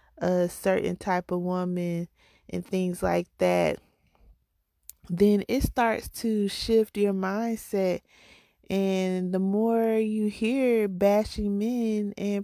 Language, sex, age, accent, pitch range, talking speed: English, female, 20-39, American, 180-210 Hz, 115 wpm